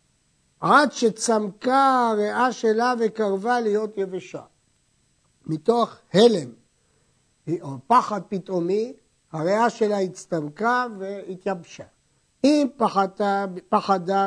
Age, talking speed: 60-79, 80 wpm